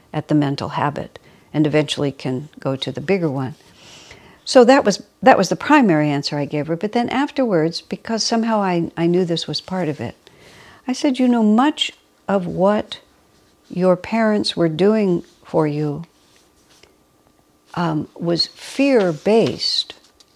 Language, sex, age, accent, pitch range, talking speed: English, female, 60-79, American, 150-195 Hz, 155 wpm